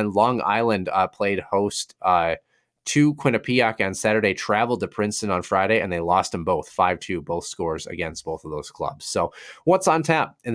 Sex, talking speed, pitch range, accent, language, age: male, 190 wpm, 90-115 Hz, American, English, 20-39